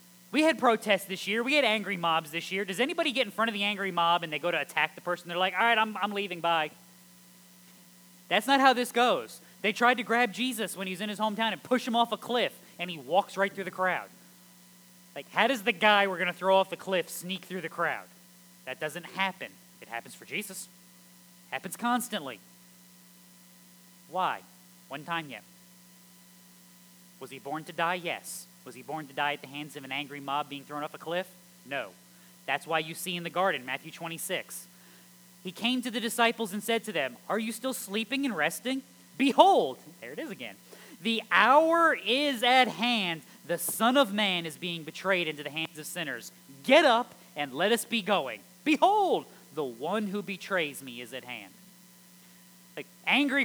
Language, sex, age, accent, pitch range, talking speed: English, male, 20-39, American, 140-220 Hz, 205 wpm